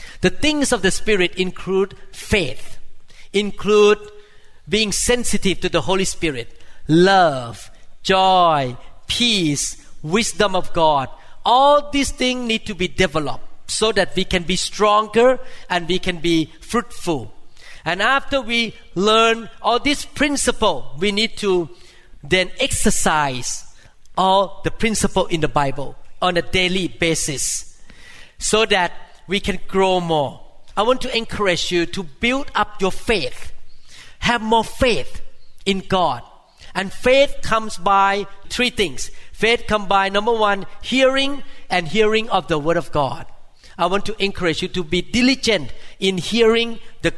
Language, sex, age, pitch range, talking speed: English, male, 40-59, 180-225 Hz, 140 wpm